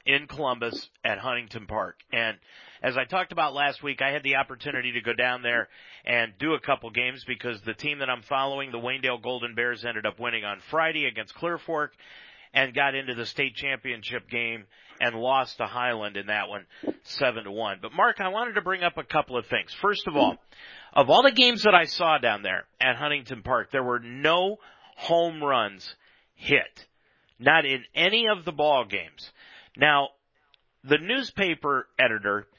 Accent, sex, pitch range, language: American, male, 120-155 Hz, English